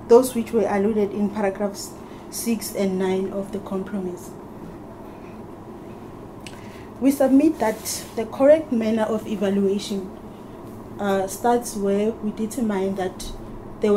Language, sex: English, female